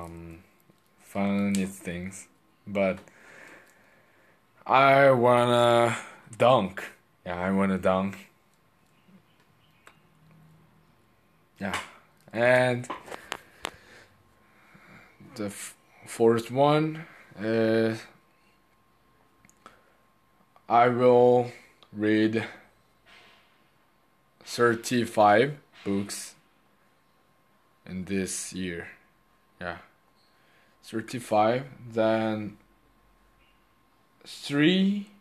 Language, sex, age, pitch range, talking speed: English, male, 20-39, 105-130 Hz, 50 wpm